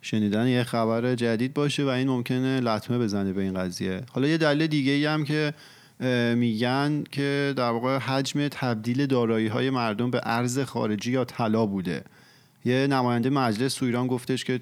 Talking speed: 170 wpm